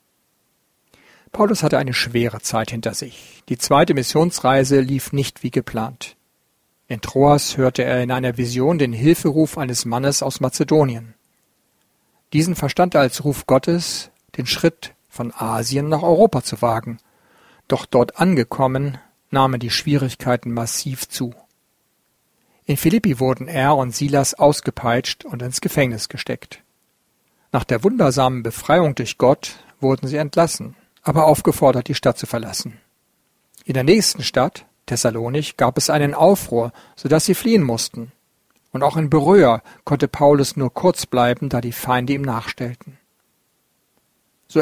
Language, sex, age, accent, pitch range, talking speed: German, male, 50-69, German, 125-150 Hz, 140 wpm